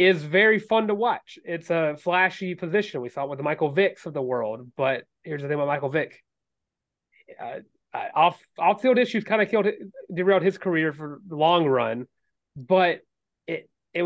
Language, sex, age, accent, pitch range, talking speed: English, male, 30-49, American, 135-180 Hz, 185 wpm